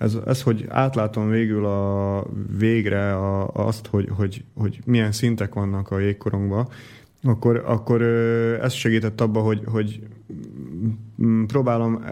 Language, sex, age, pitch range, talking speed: Slovak, male, 30-49, 105-115 Hz, 125 wpm